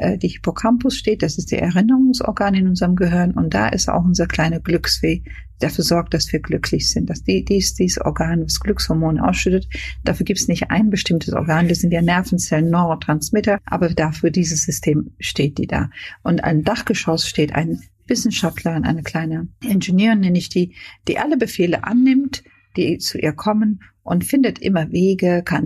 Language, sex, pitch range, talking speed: German, female, 160-195 Hz, 180 wpm